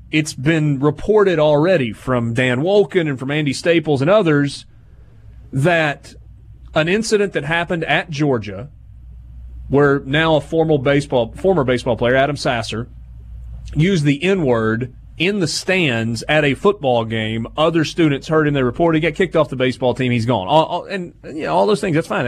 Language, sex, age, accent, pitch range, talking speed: English, male, 30-49, American, 115-160 Hz, 175 wpm